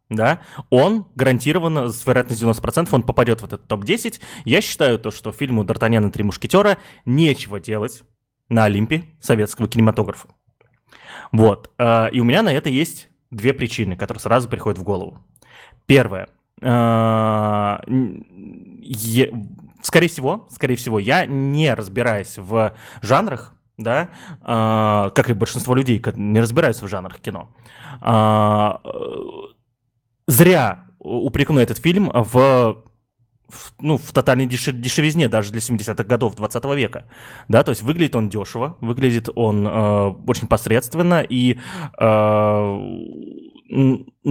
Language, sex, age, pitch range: Russian, male, 20-39, 110-135 Hz